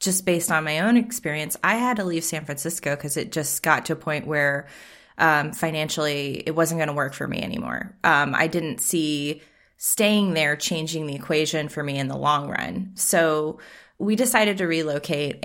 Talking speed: 195 wpm